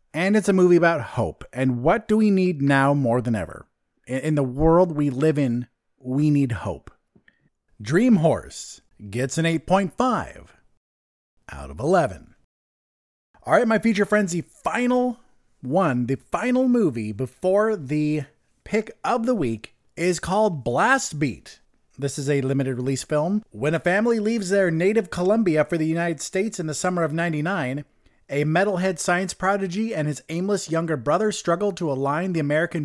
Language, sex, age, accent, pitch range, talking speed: English, male, 30-49, American, 140-195 Hz, 165 wpm